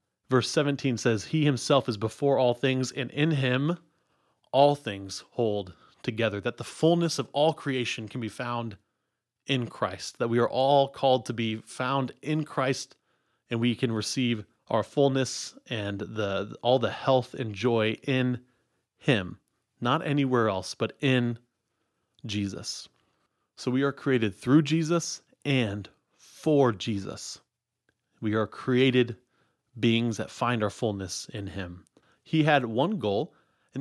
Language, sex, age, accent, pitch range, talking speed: English, male, 30-49, American, 110-140 Hz, 145 wpm